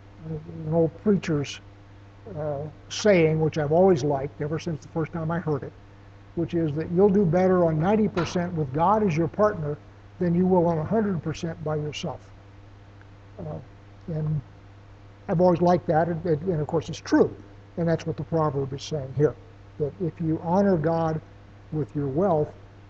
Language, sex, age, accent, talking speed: English, male, 60-79, American, 170 wpm